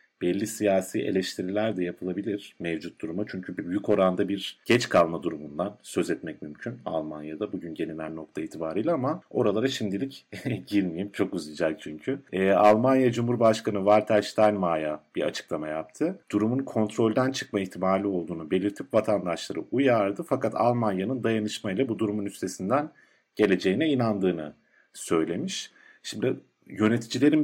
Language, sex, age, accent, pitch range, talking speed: Turkish, male, 50-69, native, 95-125 Hz, 120 wpm